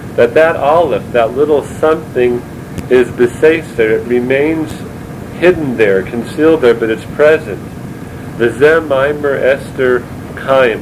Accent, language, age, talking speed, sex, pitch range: American, English, 40-59, 115 wpm, male, 115-145 Hz